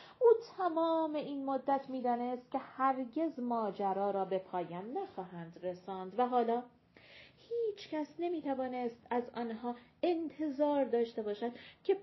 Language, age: Persian, 40-59